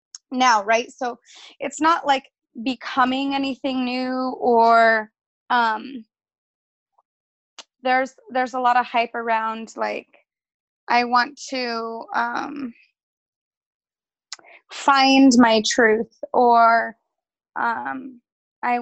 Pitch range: 230-265 Hz